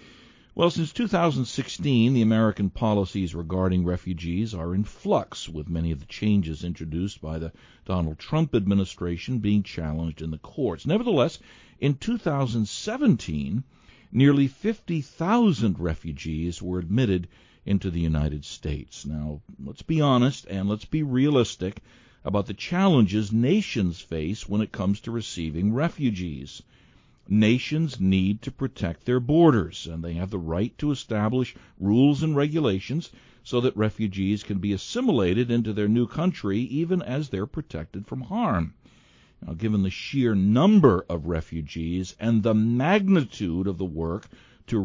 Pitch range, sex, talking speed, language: 90-130 Hz, male, 140 wpm, English